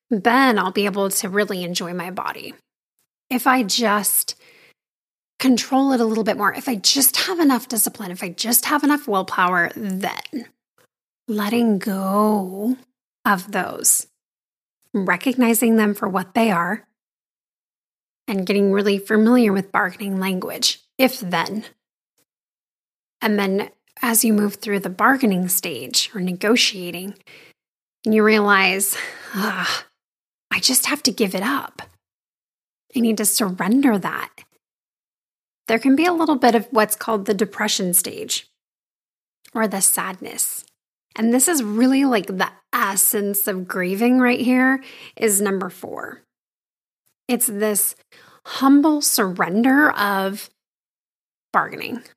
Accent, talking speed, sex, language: American, 130 wpm, female, English